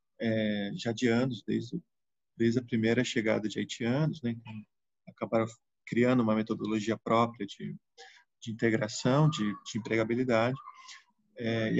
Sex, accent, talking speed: male, Brazilian, 115 wpm